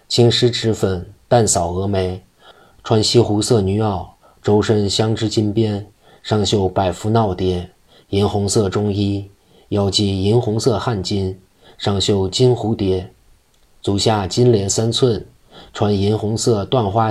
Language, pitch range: Chinese, 95-110 Hz